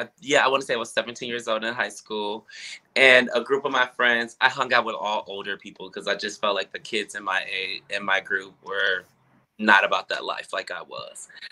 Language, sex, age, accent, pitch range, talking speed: English, male, 20-39, American, 110-135 Hz, 245 wpm